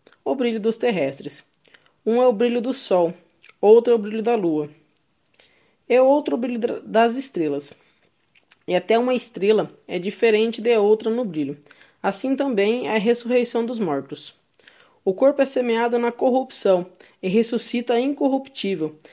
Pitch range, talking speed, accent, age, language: 185-245 Hz, 150 wpm, Brazilian, 20-39, Portuguese